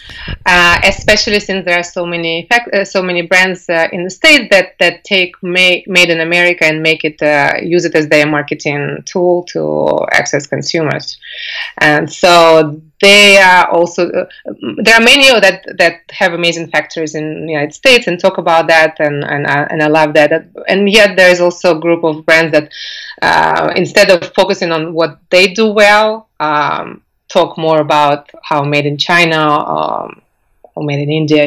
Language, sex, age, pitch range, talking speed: English, female, 30-49, 155-185 Hz, 180 wpm